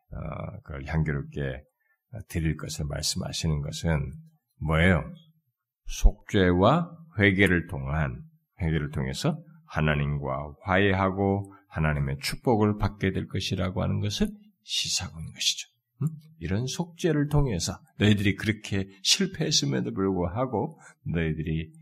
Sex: male